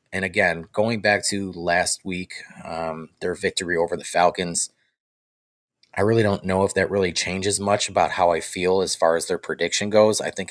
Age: 30-49